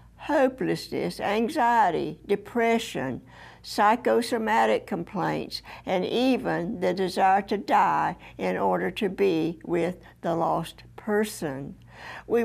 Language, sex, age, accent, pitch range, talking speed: English, female, 60-79, American, 180-230 Hz, 95 wpm